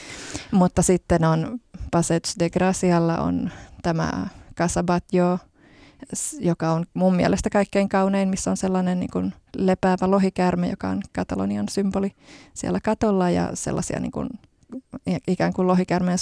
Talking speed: 125 wpm